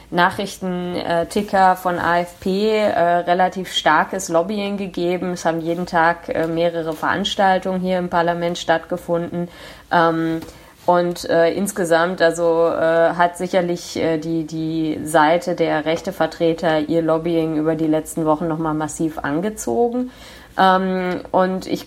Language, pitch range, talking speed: German, 160-185 Hz, 125 wpm